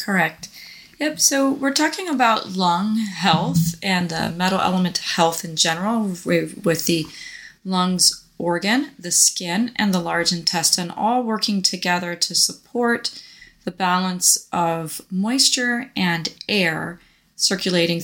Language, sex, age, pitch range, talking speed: English, female, 20-39, 170-215 Hz, 125 wpm